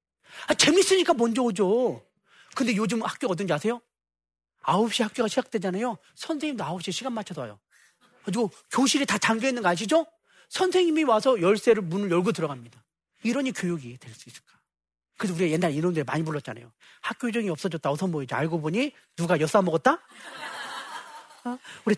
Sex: male